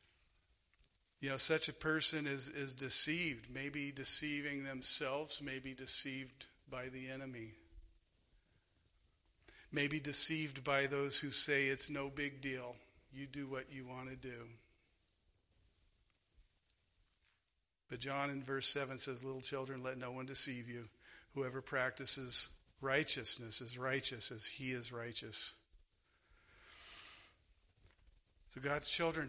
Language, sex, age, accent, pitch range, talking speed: English, male, 50-69, American, 95-145 Hz, 120 wpm